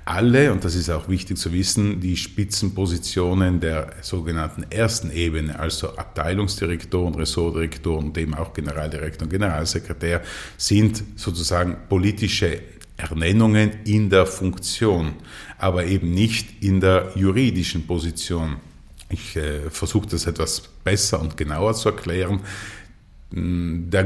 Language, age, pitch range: German, 50-69, 80-100 Hz